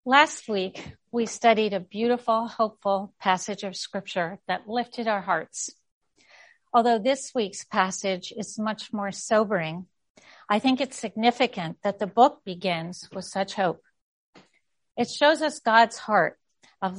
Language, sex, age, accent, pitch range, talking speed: English, female, 50-69, American, 195-230 Hz, 140 wpm